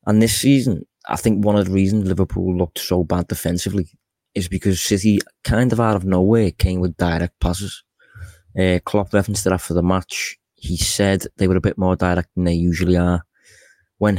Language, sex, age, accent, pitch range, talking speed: English, male, 20-39, British, 90-100 Hz, 195 wpm